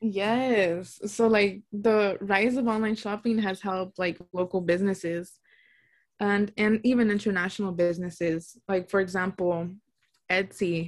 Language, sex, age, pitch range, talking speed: English, female, 20-39, 175-205 Hz, 120 wpm